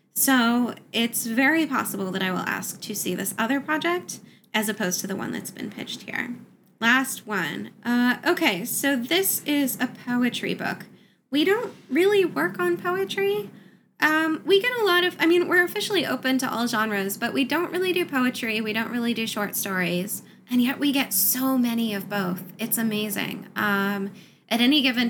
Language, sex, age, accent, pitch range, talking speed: English, female, 10-29, American, 195-265 Hz, 185 wpm